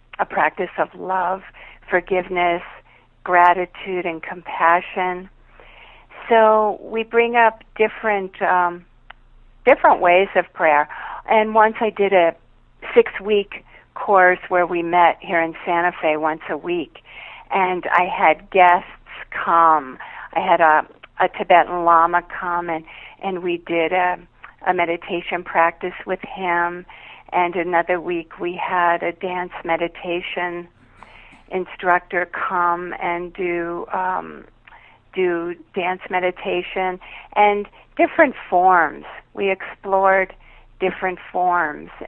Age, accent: 50-69, American